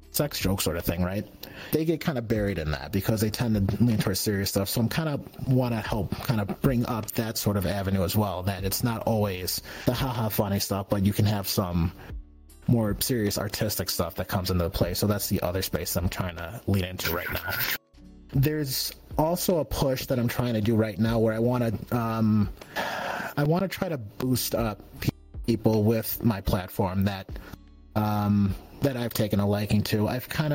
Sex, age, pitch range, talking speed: male, 30-49, 100-125 Hz, 215 wpm